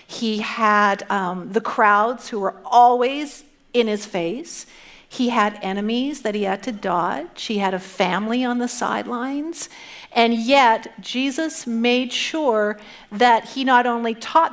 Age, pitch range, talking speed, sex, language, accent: 50-69, 220-295 Hz, 150 wpm, female, English, American